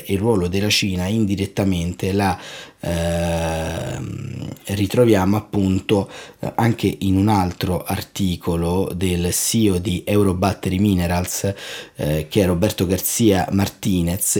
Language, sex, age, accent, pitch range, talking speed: Italian, male, 30-49, native, 90-105 Hz, 110 wpm